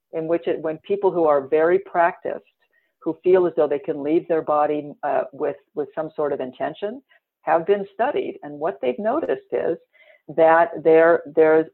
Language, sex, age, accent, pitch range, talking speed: English, female, 50-69, American, 160-205 Hz, 185 wpm